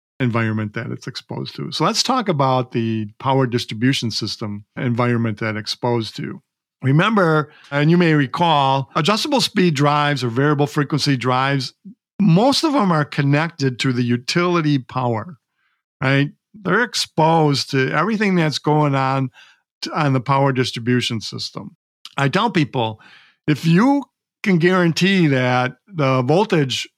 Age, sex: 50-69, male